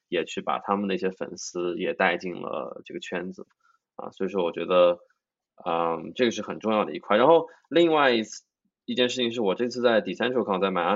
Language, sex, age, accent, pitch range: Chinese, male, 20-39, native, 95-125 Hz